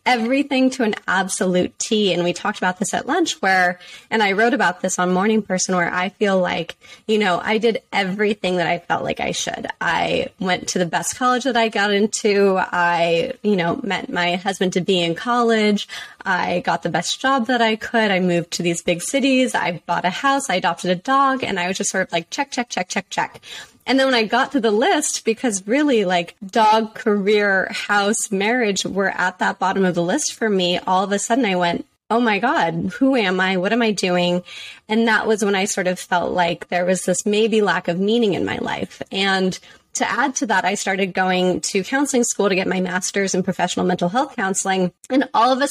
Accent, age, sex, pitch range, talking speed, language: American, 20-39, female, 185-235 Hz, 225 wpm, English